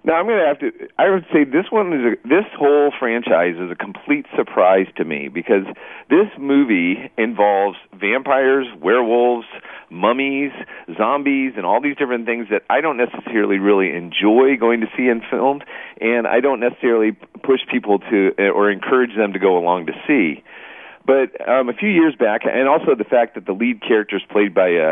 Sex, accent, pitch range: male, American, 100-140 Hz